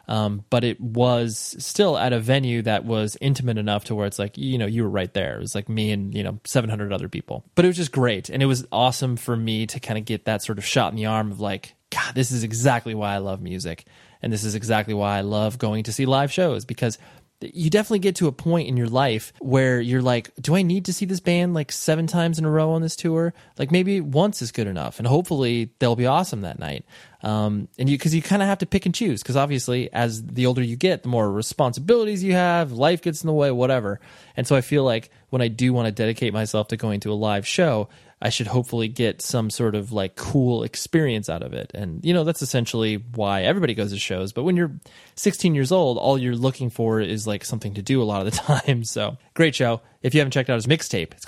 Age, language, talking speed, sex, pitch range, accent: 20-39, English, 255 wpm, male, 110-155 Hz, American